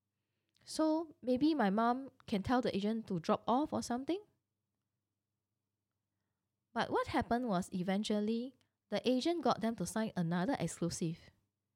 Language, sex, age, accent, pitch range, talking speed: English, female, 10-29, Malaysian, 170-250 Hz, 135 wpm